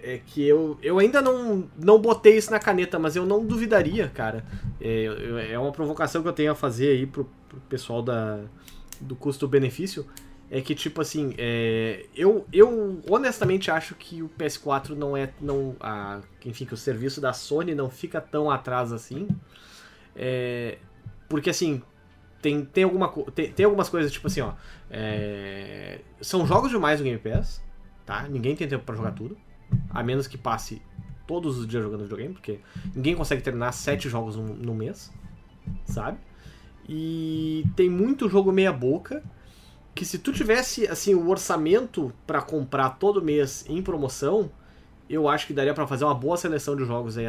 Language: Portuguese